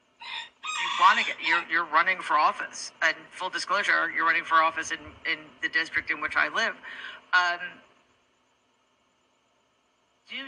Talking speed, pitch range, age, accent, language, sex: 150 wpm, 160-225 Hz, 40-59, American, English, female